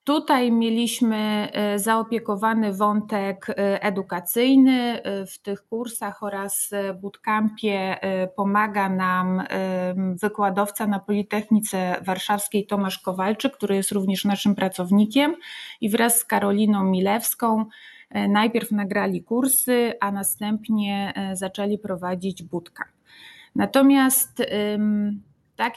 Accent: native